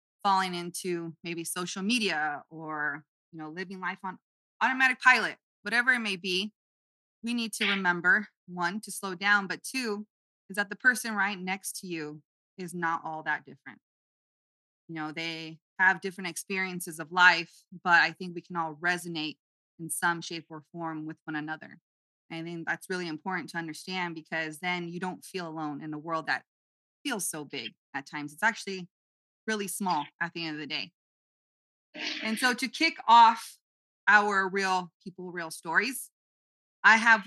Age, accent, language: 20-39, American, English